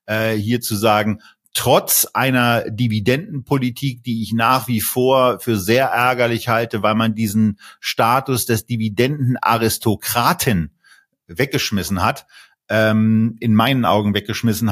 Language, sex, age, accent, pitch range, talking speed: German, male, 40-59, German, 105-120 Hz, 110 wpm